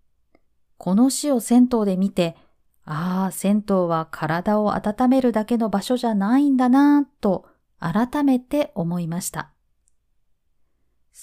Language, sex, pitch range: Japanese, female, 170-260 Hz